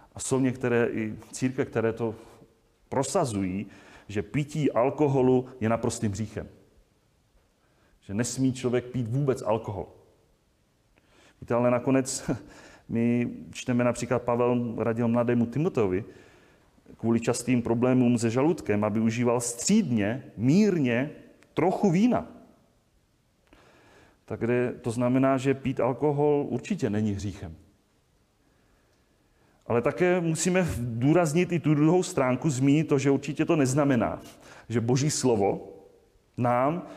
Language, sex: Czech, male